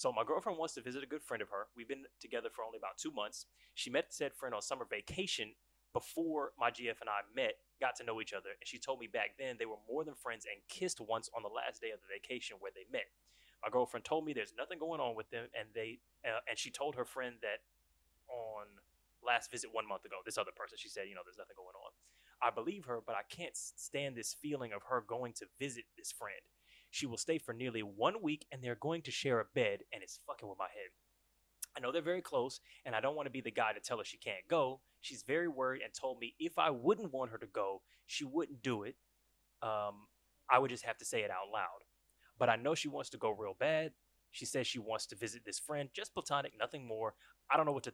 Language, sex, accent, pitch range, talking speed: English, male, American, 115-185 Hz, 255 wpm